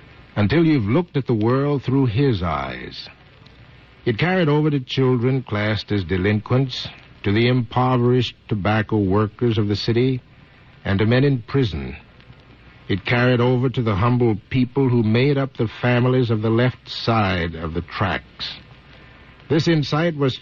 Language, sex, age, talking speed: English, male, 60-79, 155 wpm